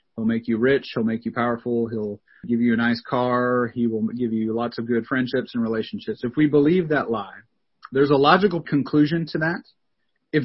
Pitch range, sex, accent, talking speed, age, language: 125-160 Hz, male, American, 205 wpm, 30-49, English